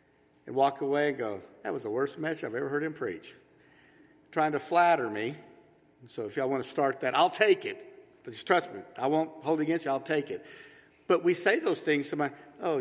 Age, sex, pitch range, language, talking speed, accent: 50-69, male, 145-230 Hz, English, 225 wpm, American